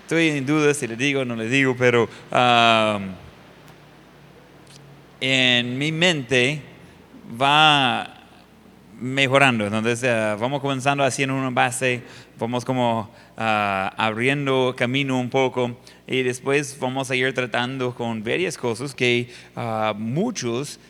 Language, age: Spanish, 30-49